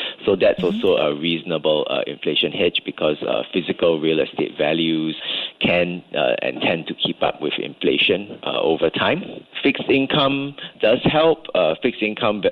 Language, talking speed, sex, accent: English, 160 wpm, male, Malaysian